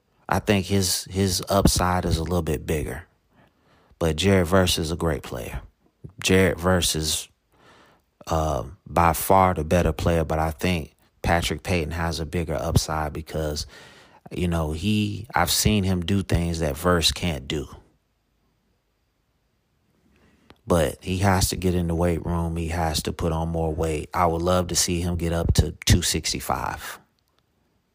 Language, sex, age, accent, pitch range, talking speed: English, male, 30-49, American, 80-95 Hz, 160 wpm